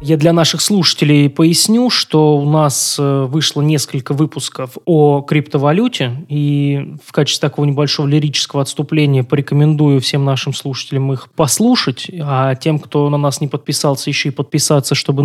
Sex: male